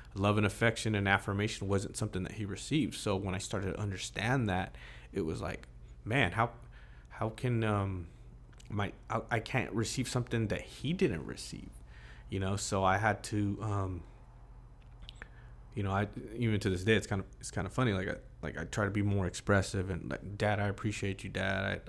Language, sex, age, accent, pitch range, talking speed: English, male, 20-39, American, 95-110 Hz, 200 wpm